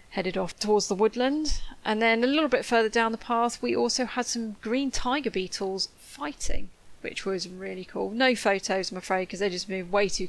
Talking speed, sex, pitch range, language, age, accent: 210 wpm, female, 195-230 Hz, English, 30-49, British